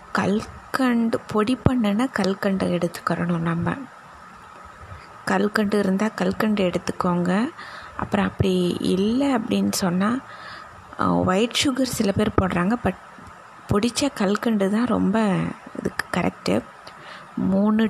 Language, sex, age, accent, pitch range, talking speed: Tamil, female, 20-39, native, 180-230 Hz, 95 wpm